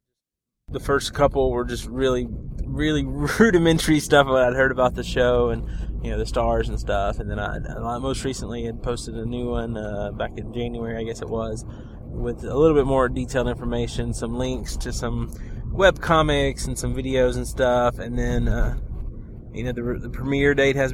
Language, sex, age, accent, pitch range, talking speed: English, male, 20-39, American, 120-140 Hz, 190 wpm